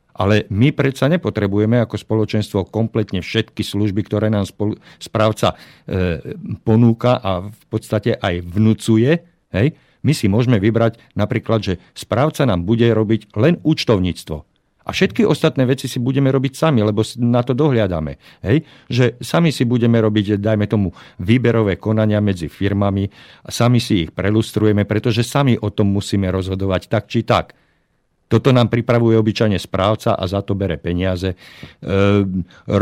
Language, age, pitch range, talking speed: Slovak, 50-69, 100-125 Hz, 150 wpm